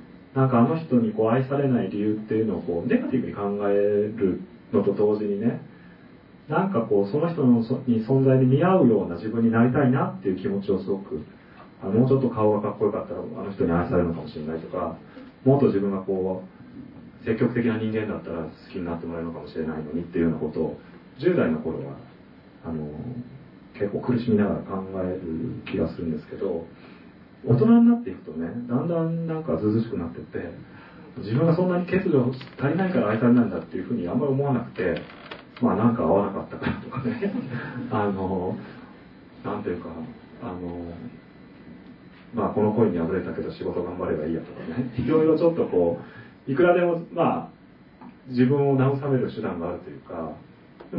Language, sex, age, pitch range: Japanese, male, 40-59, 95-140 Hz